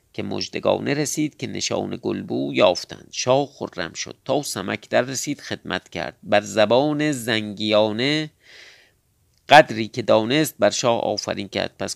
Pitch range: 100-135 Hz